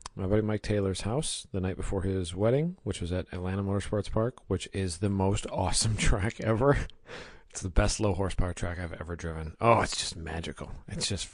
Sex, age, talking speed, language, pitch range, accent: male, 40-59, 200 wpm, English, 90-110 Hz, American